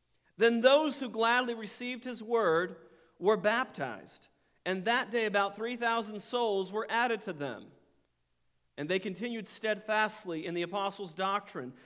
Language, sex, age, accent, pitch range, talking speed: English, male, 40-59, American, 160-215 Hz, 135 wpm